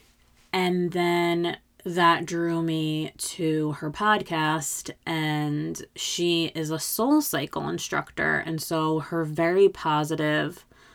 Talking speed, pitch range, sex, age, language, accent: 110 wpm, 155-195 Hz, female, 20-39, English, American